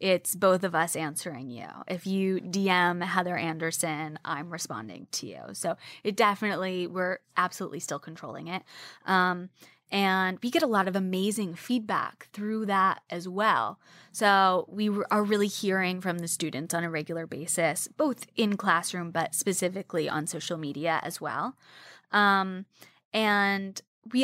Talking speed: 150 wpm